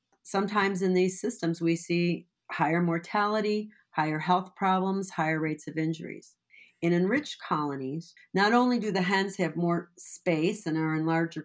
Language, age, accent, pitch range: English, 40-59, American, 165-195 Hz